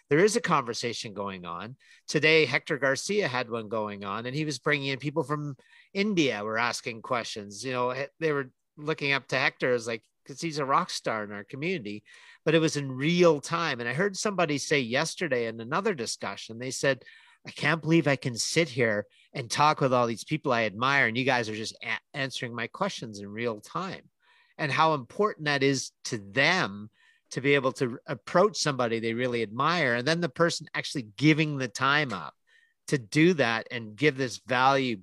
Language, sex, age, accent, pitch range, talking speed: English, male, 50-69, American, 120-160 Hz, 200 wpm